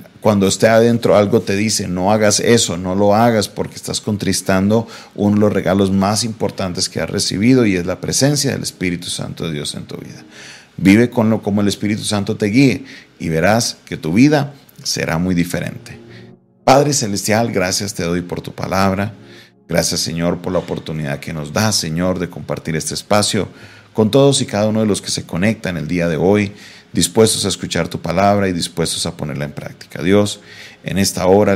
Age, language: 40-59, Spanish